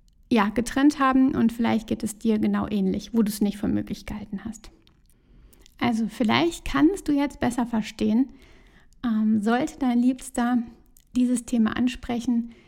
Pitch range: 220-260 Hz